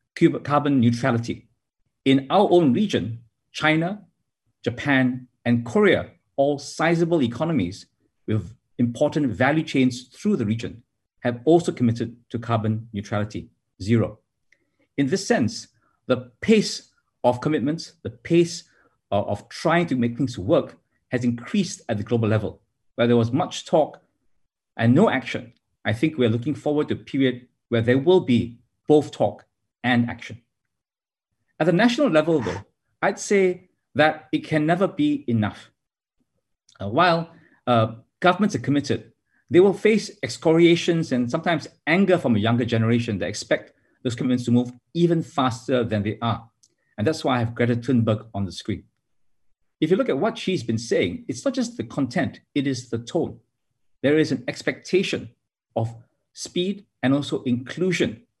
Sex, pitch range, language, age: male, 115-160 Hz, English, 50-69